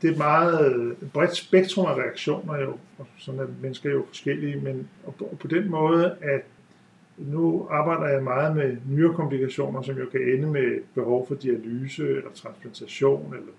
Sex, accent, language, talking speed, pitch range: male, native, Danish, 170 wpm, 135-170 Hz